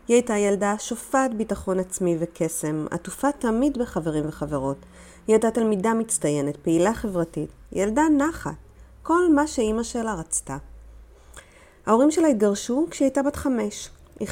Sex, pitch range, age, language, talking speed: female, 160-235 Hz, 30-49, Hebrew, 135 wpm